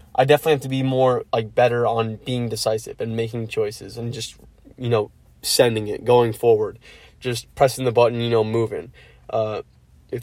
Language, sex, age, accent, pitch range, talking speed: English, male, 20-39, American, 110-125 Hz, 180 wpm